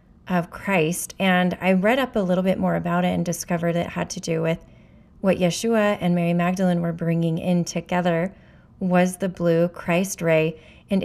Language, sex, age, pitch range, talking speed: English, female, 30-49, 170-185 Hz, 185 wpm